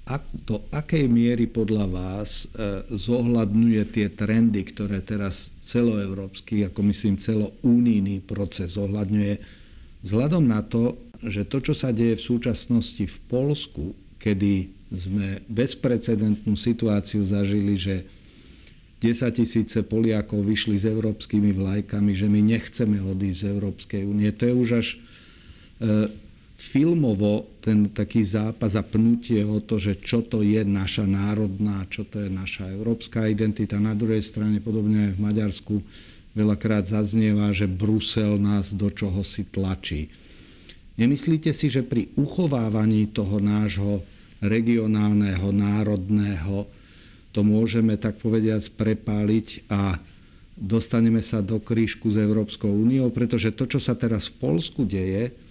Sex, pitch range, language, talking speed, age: male, 100-115 Hz, Slovak, 130 wpm, 50-69